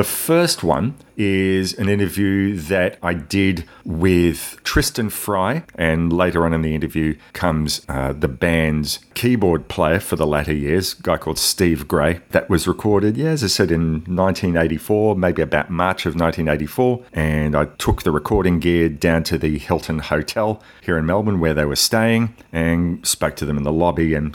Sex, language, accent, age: male, English, Australian, 40-59